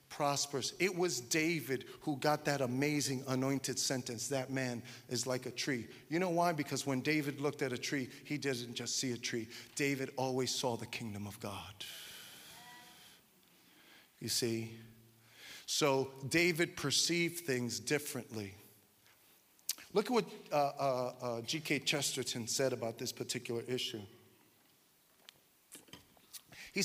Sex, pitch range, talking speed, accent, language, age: male, 120-155 Hz, 135 wpm, American, English, 40-59